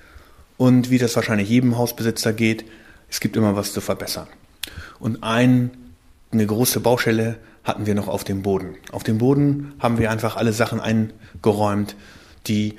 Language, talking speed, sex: German, 155 wpm, male